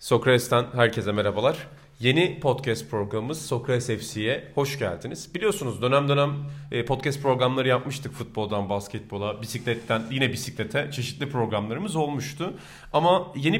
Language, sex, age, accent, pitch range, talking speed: Turkish, male, 40-59, native, 120-160 Hz, 115 wpm